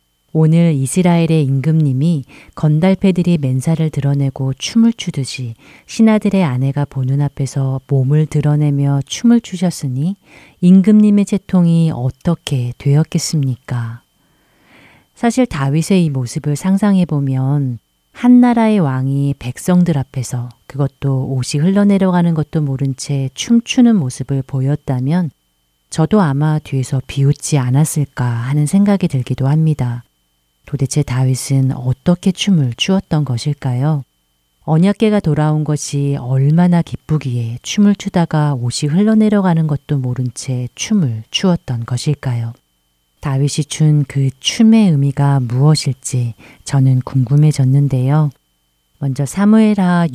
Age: 40-59